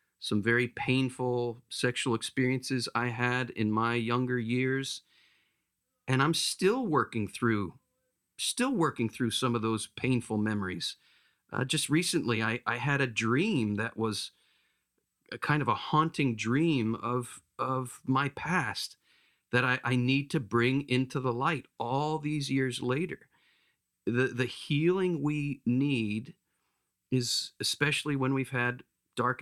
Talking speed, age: 140 wpm, 40-59